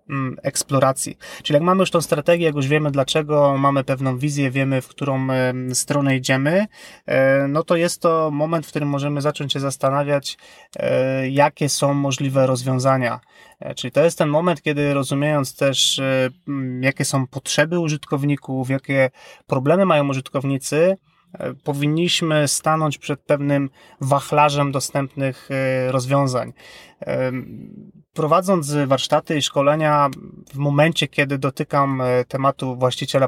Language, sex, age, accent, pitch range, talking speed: Polish, male, 30-49, native, 135-155 Hz, 120 wpm